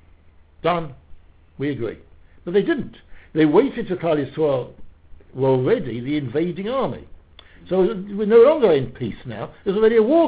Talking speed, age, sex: 165 wpm, 60-79, male